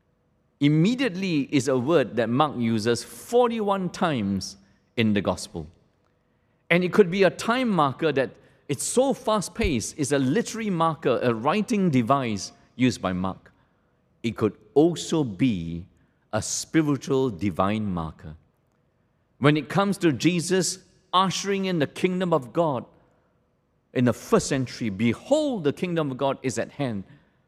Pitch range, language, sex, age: 105-175 Hz, English, male, 50-69